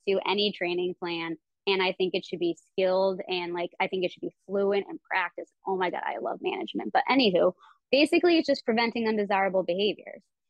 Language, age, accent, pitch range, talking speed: English, 20-39, American, 175-210 Hz, 200 wpm